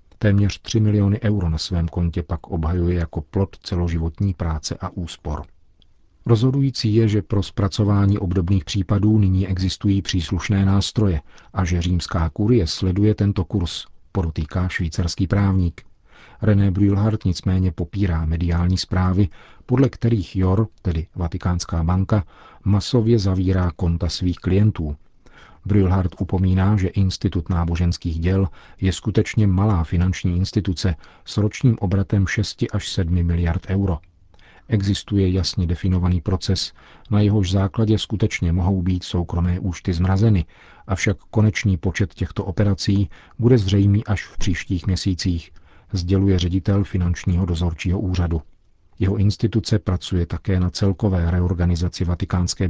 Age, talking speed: 40-59, 125 wpm